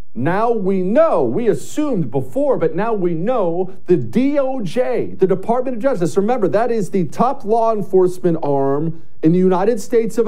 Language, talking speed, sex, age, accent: English, 170 wpm, male, 50-69, American